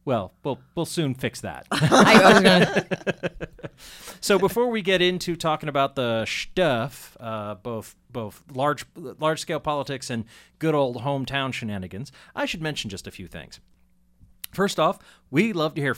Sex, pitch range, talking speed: male, 110-160 Hz, 145 wpm